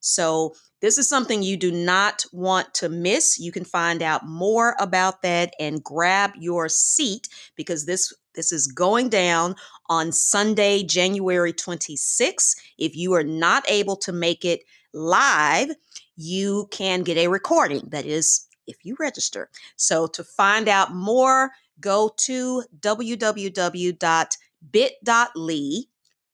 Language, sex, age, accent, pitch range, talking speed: English, female, 30-49, American, 170-215 Hz, 130 wpm